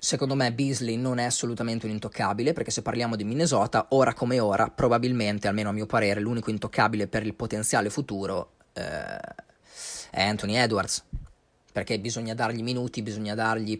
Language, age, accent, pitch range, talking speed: Italian, 20-39, native, 105-125 Hz, 160 wpm